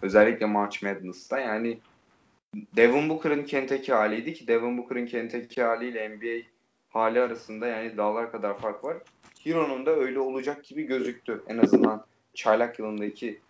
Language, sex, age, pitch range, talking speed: Turkish, male, 30-49, 110-125 Hz, 140 wpm